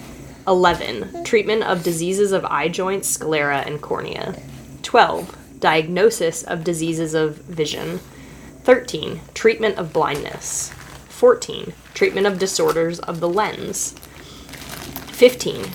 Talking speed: 105 wpm